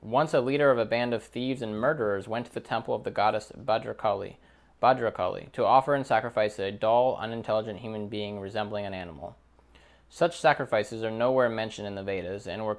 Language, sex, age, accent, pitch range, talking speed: English, male, 20-39, American, 95-125 Hz, 190 wpm